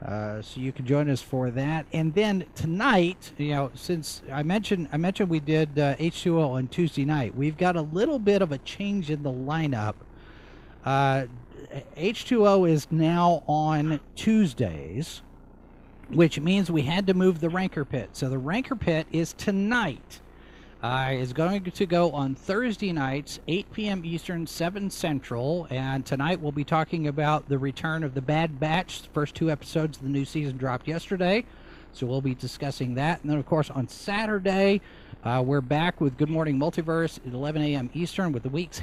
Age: 50-69